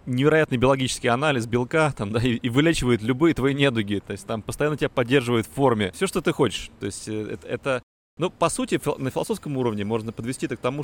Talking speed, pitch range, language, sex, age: 220 wpm, 110-140 Hz, Russian, male, 30-49